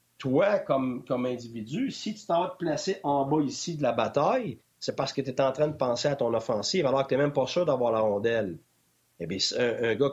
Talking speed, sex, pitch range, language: 245 wpm, male, 125-160 Hz, French